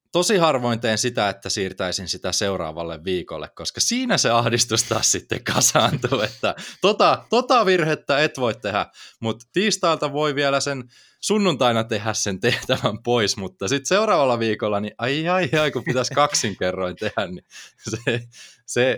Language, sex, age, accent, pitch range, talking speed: Finnish, male, 20-39, native, 90-130 Hz, 150 wpm